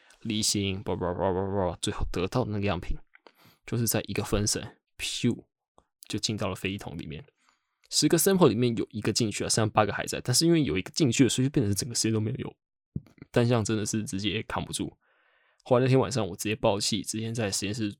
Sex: male